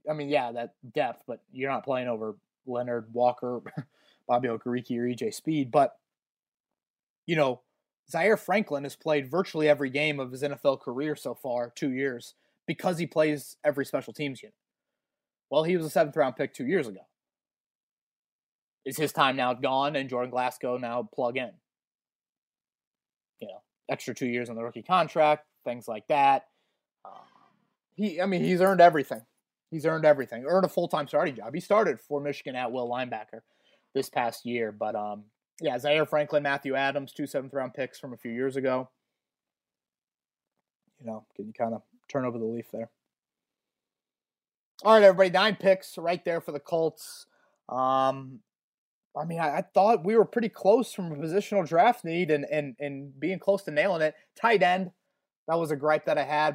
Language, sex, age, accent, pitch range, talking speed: English, male, 20-39, American, 125-180 Hz, 175 wpm